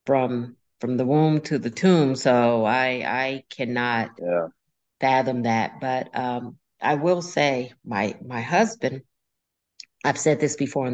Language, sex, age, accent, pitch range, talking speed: English, female, 50-69, American, 130-150 Hz, 150 wpm